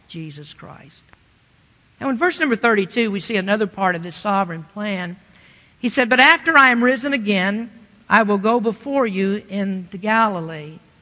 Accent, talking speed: American, 165 wpm